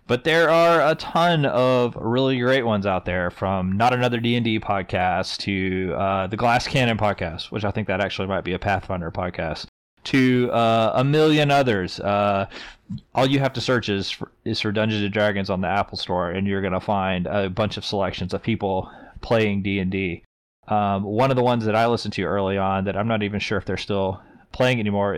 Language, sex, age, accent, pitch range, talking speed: English, male, 20-39, American, 95-115 Hz, 215 wpm